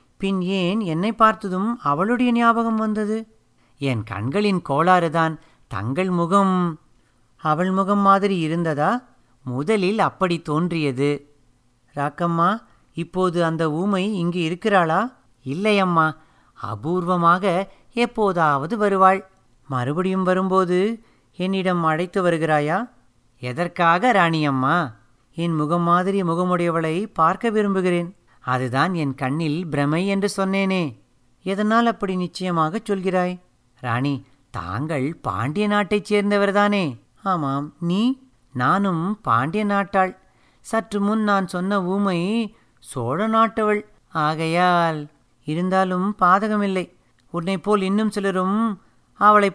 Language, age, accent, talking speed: Tamil, 30-49, native, 95 wpm